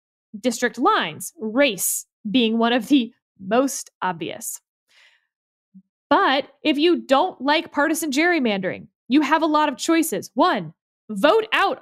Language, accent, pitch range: English, American, 220-295 Hz